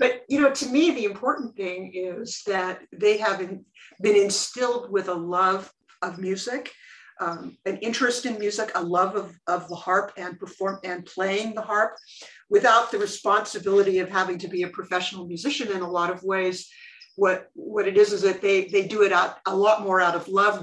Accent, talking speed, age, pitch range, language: American, 200 wpm, 50-69, 180-240 Hz, English